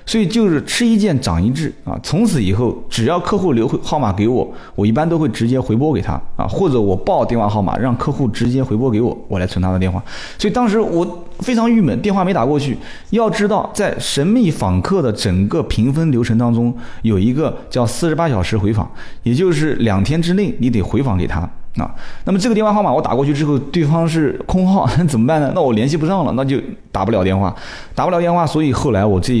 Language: Chinese